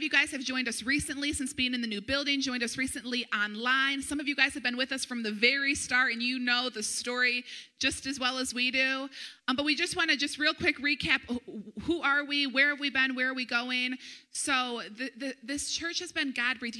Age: 30-49